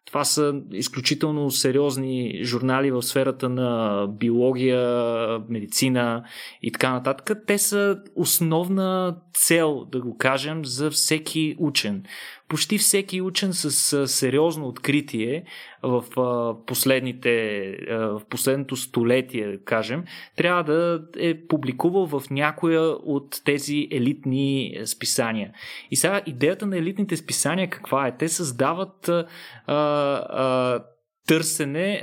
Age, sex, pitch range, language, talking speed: 20-39, male, 130-170 Hz, Bulgarian, 105 wpm